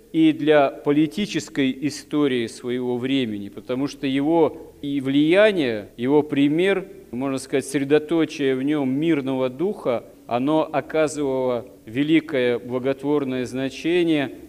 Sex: male